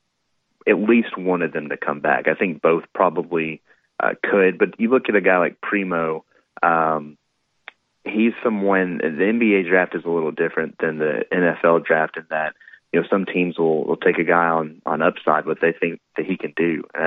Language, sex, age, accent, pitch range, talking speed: English, male, 30-49, American, 80-90 Hz, 205 wpm